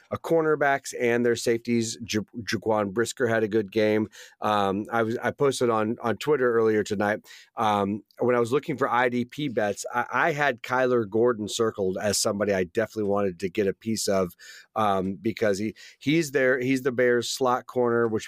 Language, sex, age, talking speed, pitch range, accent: English, male, 30-49, 185 wpm, 105-120 Hz, American